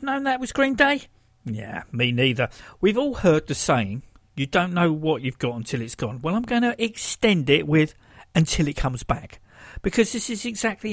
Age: 50-69